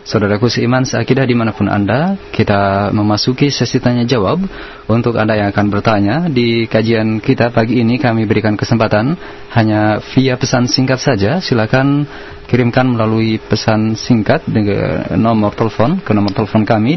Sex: male